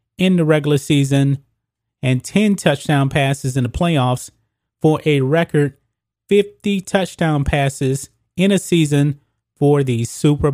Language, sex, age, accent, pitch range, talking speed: English, male, 30-49, American, 120-165 Hz, 130 wpm